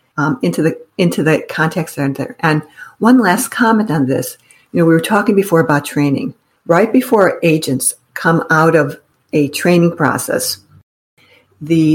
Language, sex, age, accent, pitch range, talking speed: English, female, 60-79, American, 150-180 Hz, 150 wpm